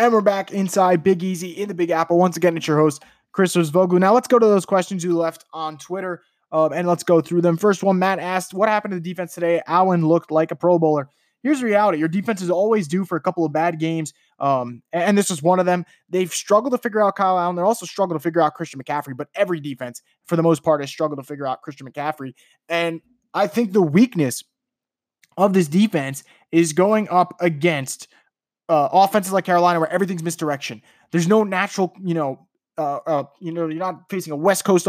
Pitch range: 160-190 Hz